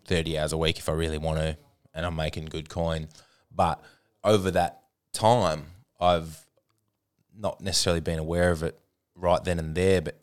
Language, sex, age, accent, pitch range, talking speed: English, male, 20-39, Australian, 80-95 Hz, 175 wpm